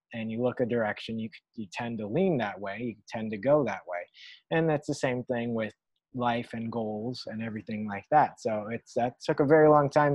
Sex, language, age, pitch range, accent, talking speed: male, English, 20-39, 115-140 Hz, American, 230 wpm